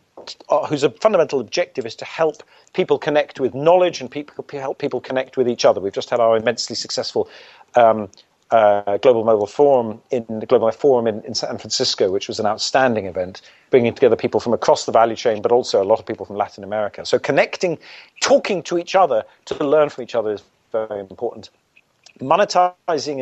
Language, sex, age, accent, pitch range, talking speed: English, male, 40-59, British, 115-155 Hz, 180 wpm